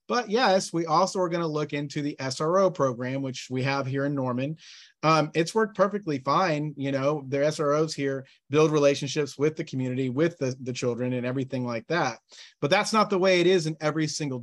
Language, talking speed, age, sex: English, 210 wpm, 30-49, male